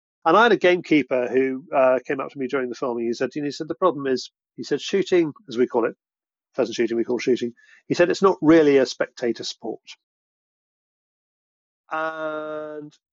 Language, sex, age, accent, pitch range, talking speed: English, male, 40-59, British, 130-175 Hz, 195 wpm